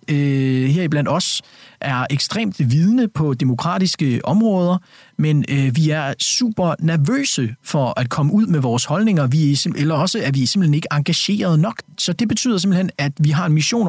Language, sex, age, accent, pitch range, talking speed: Danish, male, 40-59, native, 125-160 Hz, 180 wpm